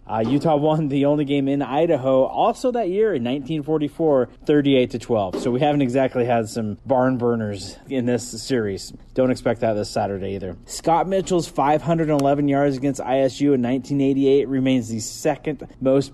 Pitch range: 115-140 Hz